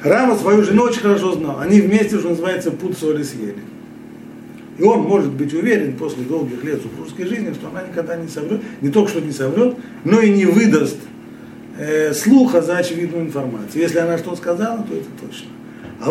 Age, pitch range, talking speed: 50-69, 135-185 Hz, 185 wpm